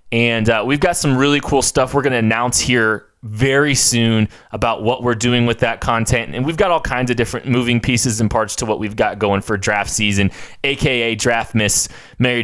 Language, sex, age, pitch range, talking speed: English, male, 20-39, 110-135 Hz, 215 wpm